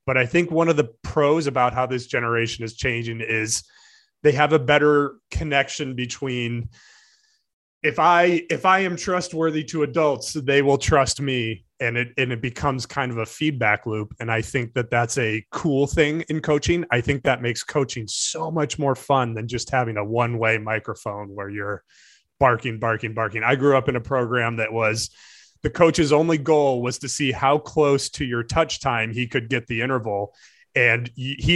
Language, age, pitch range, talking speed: English, 30-49, 120-150 Hz, 190 wpm